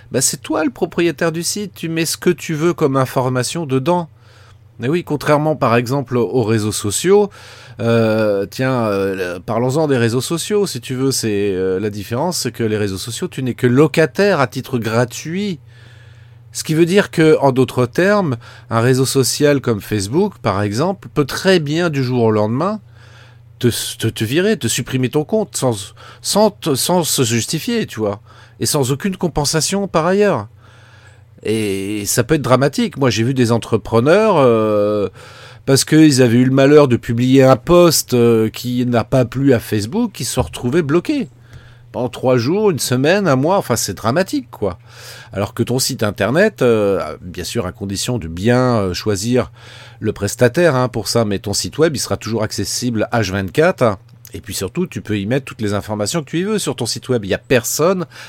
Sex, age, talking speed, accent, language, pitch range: male, 40-59, 190 wpm, French, French, 115-150 Hz